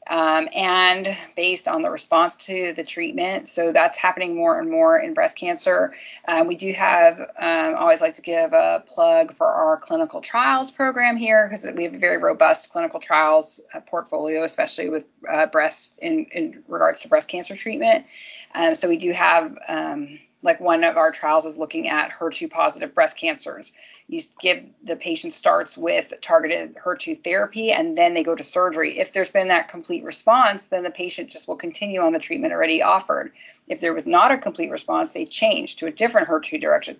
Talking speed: 190 wpm